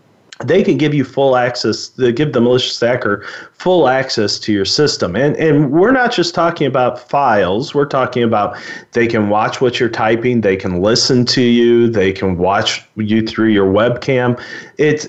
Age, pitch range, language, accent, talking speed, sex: 40-59, 115-155 Hz, English, American, 185 wpm, male